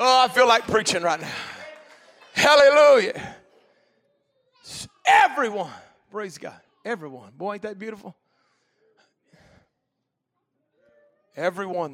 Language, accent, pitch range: English, American, 220-335 Hz